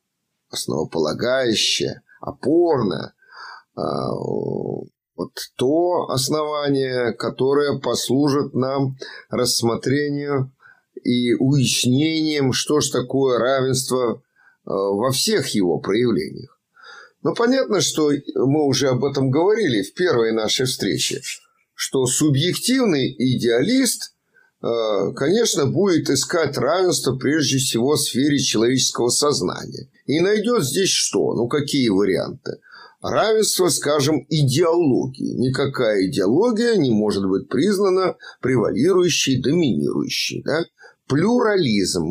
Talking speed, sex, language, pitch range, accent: 90 wpm, male, Russian, 125-165 Hz, native